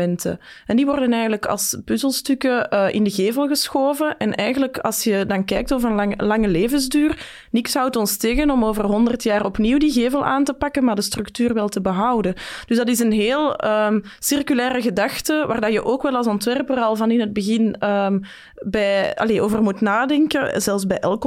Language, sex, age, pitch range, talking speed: Dutch, female, 20-39, 205-260 Hz, 185 wpm